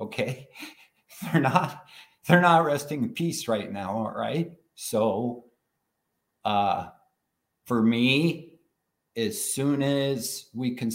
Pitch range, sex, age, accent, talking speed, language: 120-150 Hz, male, 50-69, American, 115 wpm, English